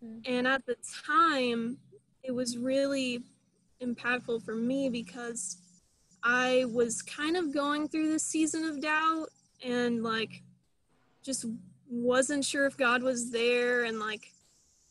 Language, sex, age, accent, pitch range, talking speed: English, female, 10-29, American, 230-270 Hz, 130 wpm